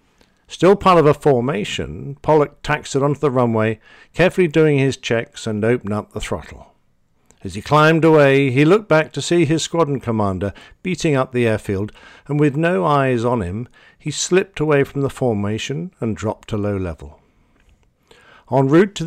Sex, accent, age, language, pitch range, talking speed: male, British, 50-69, English, 105-150 Hz, 175 wpm